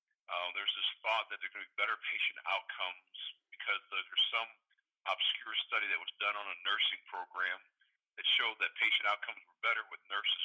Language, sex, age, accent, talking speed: English, male, 50-69, American, 195 wpm